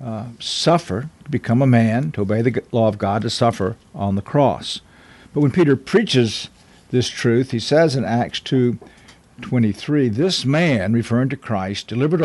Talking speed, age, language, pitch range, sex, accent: 170 wpm, 50-69, English, 110-140 Hz, male, American